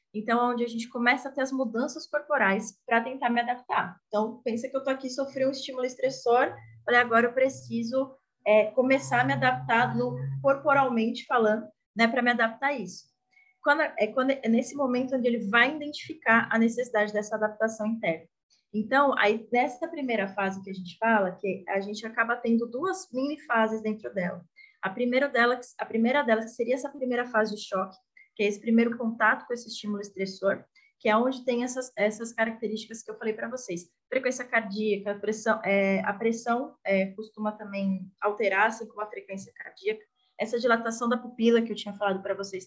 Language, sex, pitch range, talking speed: Portuguese, female, 210-255 Hz, 195 wpm